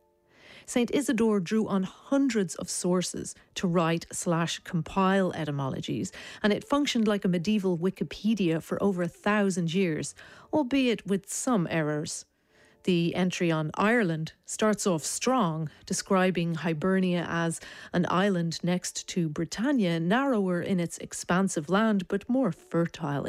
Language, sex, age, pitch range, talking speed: English, female, 40-59, 170-230 Hz, 125 wpm